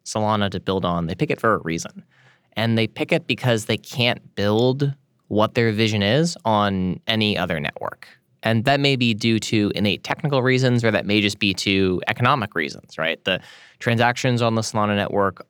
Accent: American